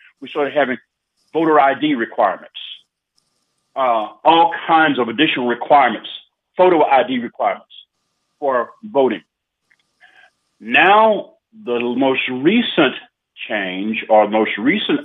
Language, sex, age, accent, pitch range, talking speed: English, male, 50-69, American, 125-155 Hz, 100 wpm